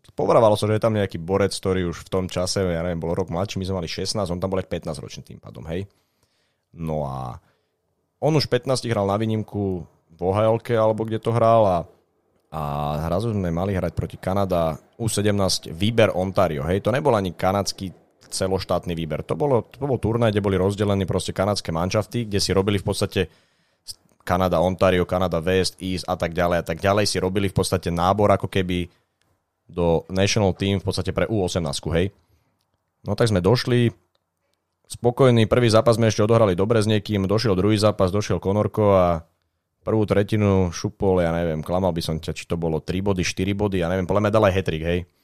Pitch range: 90-110 Hz